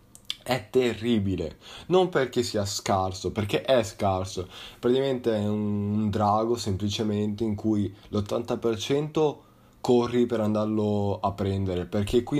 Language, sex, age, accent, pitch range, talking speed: Italian, male, 20-39, native, 105-125 Hz, 115 wpm